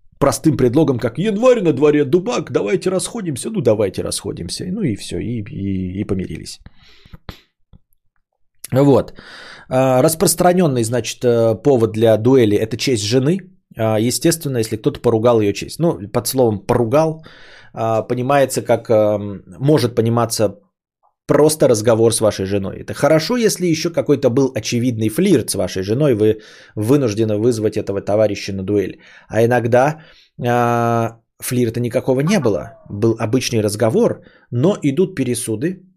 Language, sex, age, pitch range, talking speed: Bulgarian, male, 20-39, 110-155 Hz, 130 wpm